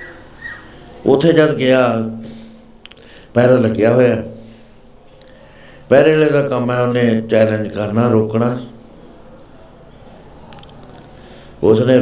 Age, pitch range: 60-79, 110-125 Hz